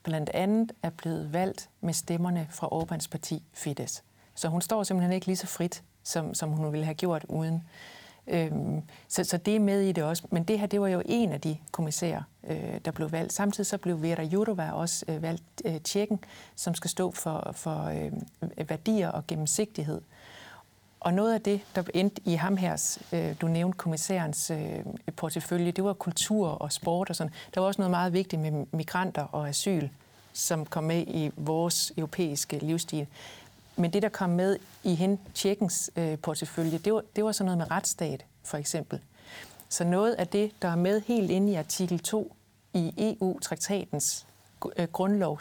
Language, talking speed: Danish, 175 wpm